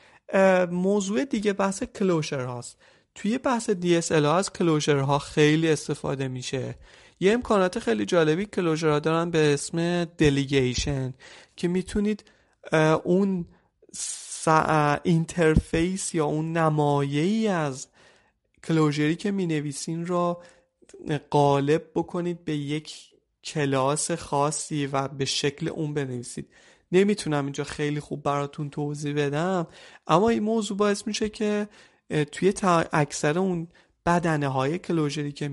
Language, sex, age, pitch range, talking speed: Persian, male, 30-49, 145-175 Hz, 115 wpm